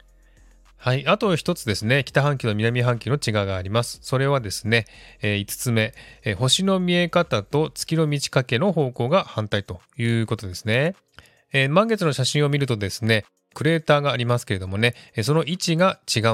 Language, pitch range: Japanese, 110-155 Hz